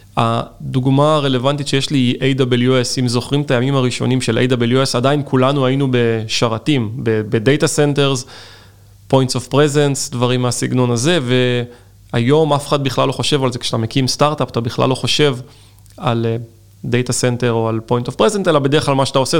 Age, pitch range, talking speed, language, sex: 20-39, 120-140 Hz, 165 wpm, Hebrew, male